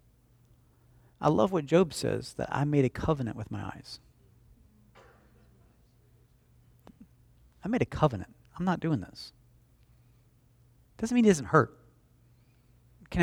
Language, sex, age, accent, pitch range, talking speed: English, male, 40-59, American, 115-145 Hz, 120 wpm